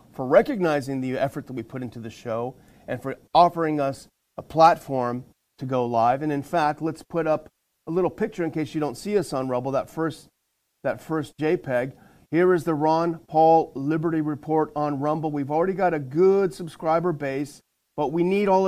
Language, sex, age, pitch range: English, male, 40-59, 130-165 Hz